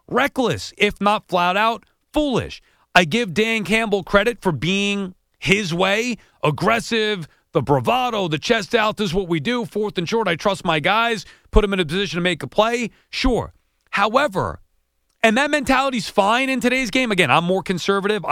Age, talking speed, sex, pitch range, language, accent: 40-59, 180 wpm, male, 165-220 Hz, English, American